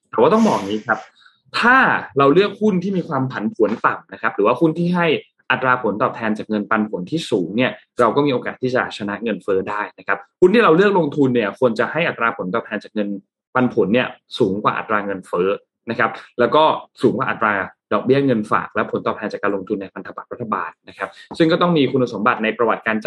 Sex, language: male, Thai